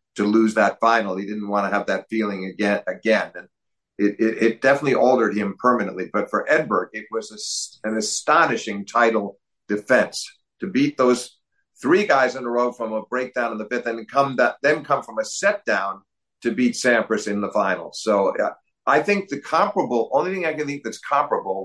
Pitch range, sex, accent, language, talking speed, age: 105-125 Hz, male, American, English, 200 wpm, 50-69